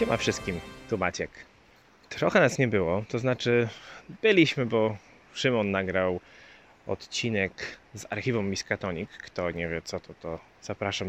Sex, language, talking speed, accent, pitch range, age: male, Polish, 135 wpm, native, 95-115 Hz, 20-39